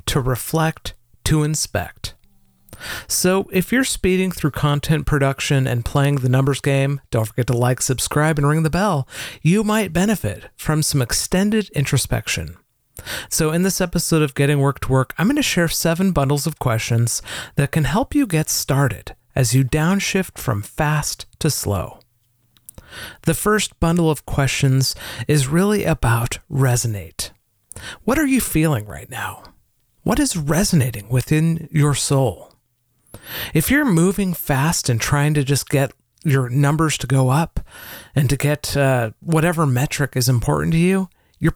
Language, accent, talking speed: English, American, 155 wpm